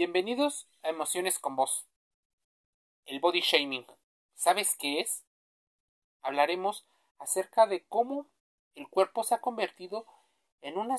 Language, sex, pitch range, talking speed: Spanish, male, 150-215 Hz, 120 wpm